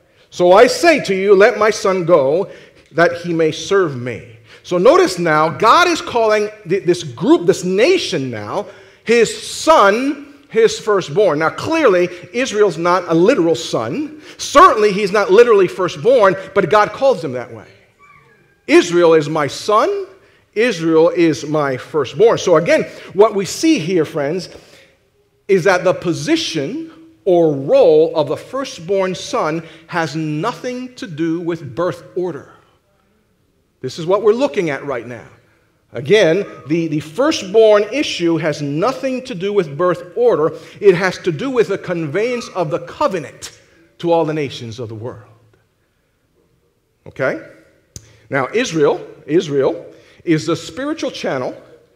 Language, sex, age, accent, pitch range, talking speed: English, male, 40-59, American, 165-265 Hz, 145 wpm